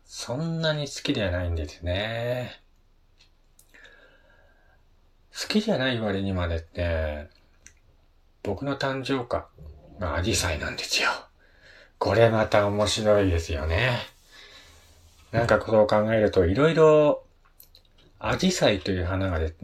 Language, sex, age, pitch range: Japanese, male, 40-59, 80-115 Hz